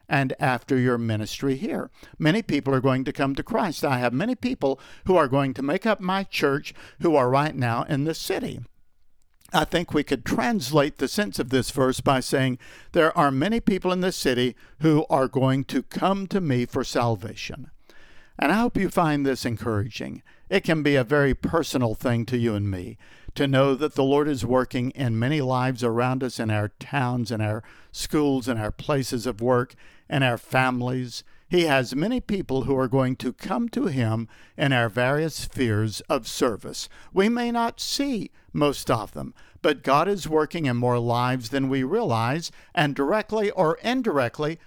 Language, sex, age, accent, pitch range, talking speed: English, male, 60-79, American, 130-185 Hz, 190 wpm